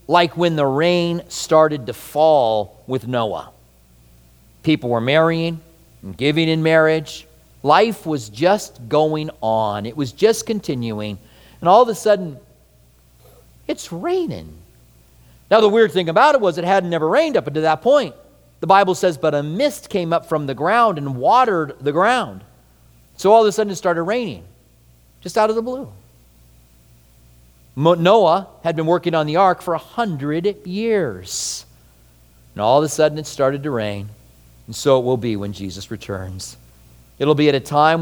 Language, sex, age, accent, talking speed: English, male, 40-59, American, 170 wpm